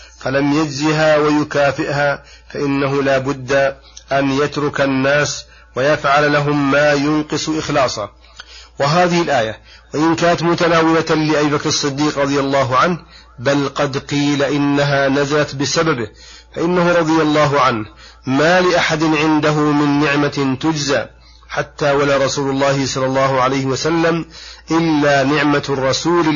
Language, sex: Arabic, male